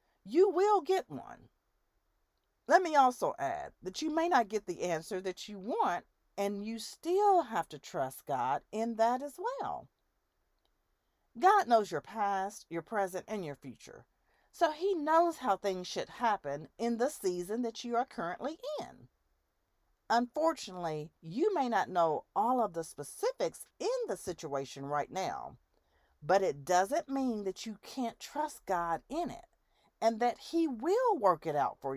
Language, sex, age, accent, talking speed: English, female, 40-59, American, 160 wpm